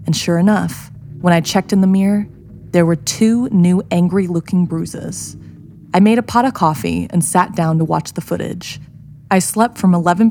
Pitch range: 155-185 Hz